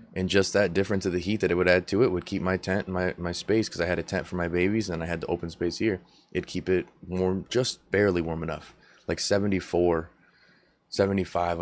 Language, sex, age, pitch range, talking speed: English, male, 20-39, 85-95 Hz, 245 wpm